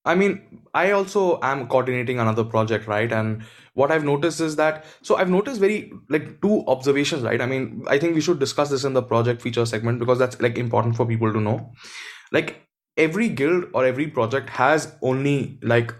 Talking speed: 200 wpm